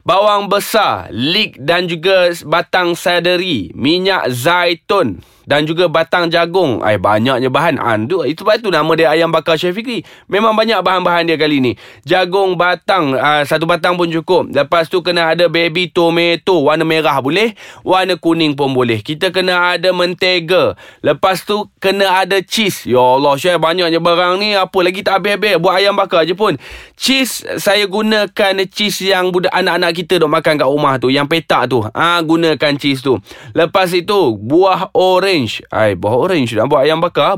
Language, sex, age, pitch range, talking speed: Malay, male, 20-39, 155-190 Hz, 175 wpm